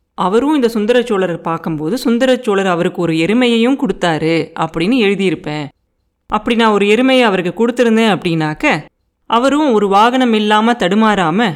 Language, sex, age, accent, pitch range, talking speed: Tamil, female, 30-49, native, 175-225 Hz, 120 wpm